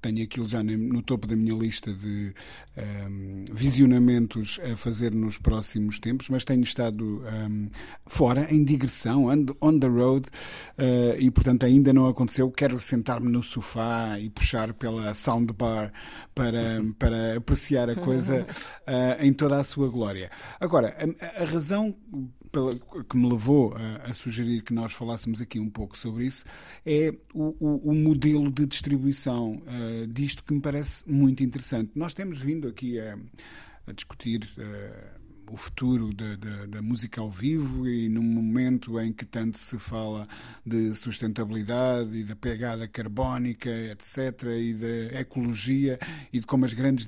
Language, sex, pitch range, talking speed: Portuguese, male, 110-130 Hz, 150 wpm